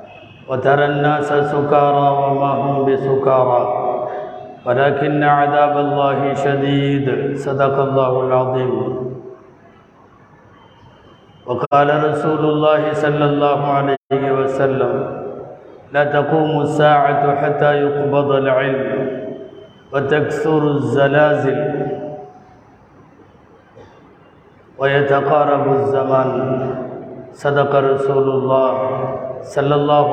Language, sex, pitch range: Tamil, male, 135-145 Hz